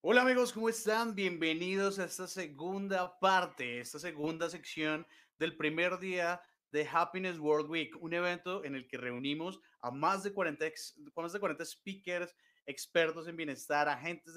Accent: Colombian